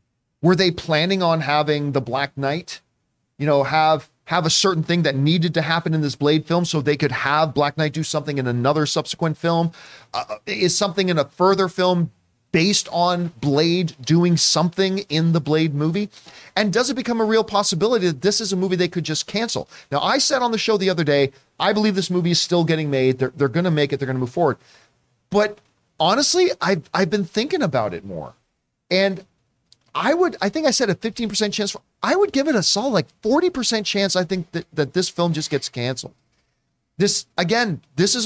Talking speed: 215 wpm